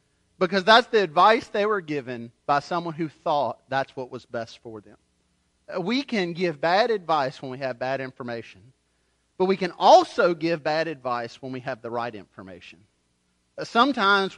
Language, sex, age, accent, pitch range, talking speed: English, male, 40-59, American, 130-200 Hz, 170 wpm